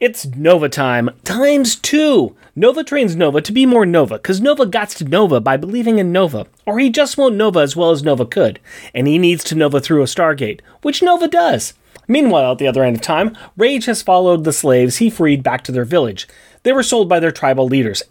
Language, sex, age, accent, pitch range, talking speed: English, male, 30-49, American, 160-270 Hz, 220 wpm